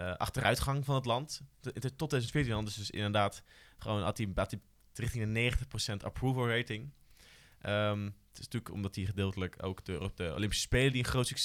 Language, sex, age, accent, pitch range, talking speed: Dutch, male, 20-39, Dutch, 100-120 Hz, 150 wpm